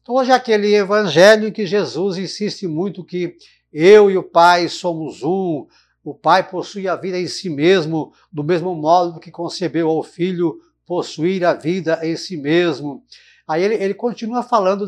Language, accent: Portuguese, Brazilian